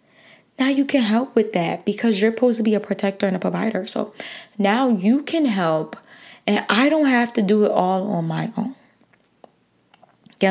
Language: English